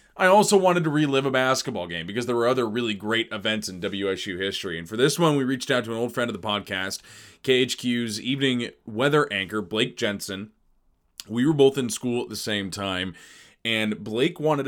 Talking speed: 205 wpm